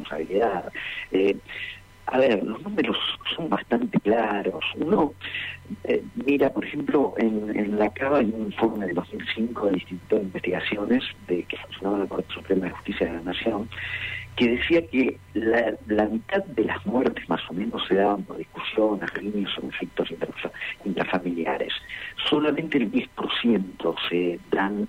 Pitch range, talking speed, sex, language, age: 100-140 Hz, 150 wpm, male, Spanish, 50-69